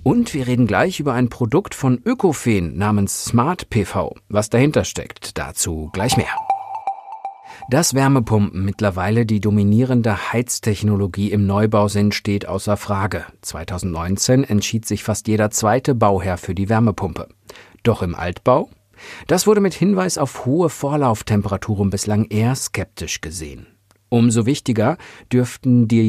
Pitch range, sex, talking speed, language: 100-130 Hz, male, 135 wpm, German